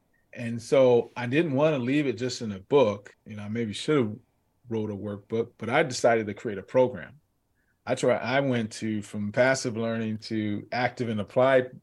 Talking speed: 205 wpm